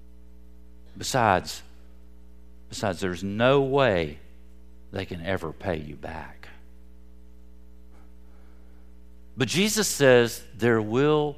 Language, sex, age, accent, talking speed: English, male, 50-69, American, 85 wpm